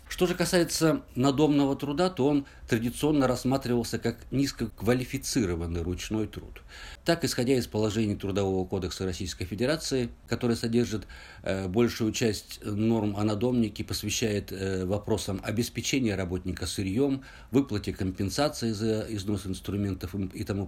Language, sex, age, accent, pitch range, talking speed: Russian, male, 50-69, native, 95-120 Hz, 115 wpm